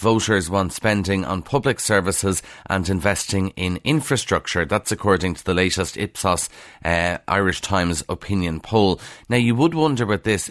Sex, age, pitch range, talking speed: male, 30-49, 90-110 Hz, 155 wpm